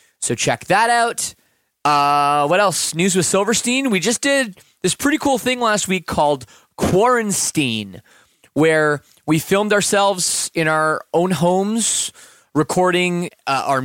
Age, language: 20-39, English